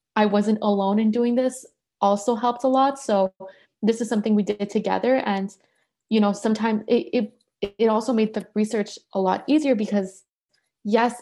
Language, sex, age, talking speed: English, female, 20-39, 175 wpm